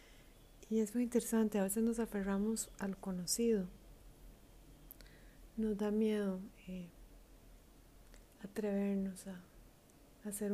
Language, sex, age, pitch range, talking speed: Spanish, female, 30-49, 195-220 Hz, 95 wpm